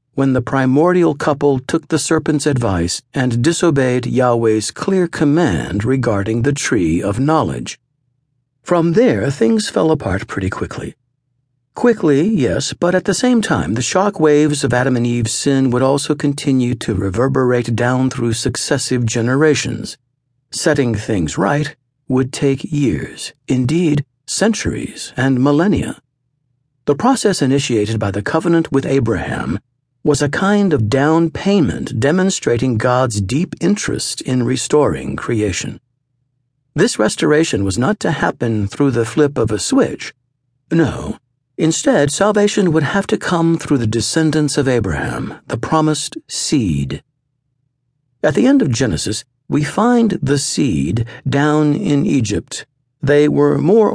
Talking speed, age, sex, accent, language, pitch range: 135 wpm, 50-69, male, American, English, 125-155 Hz